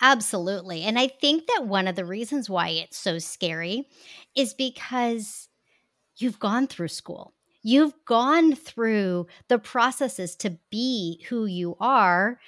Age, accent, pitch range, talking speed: 40-59, American, 185-245 Hz, 140 wpm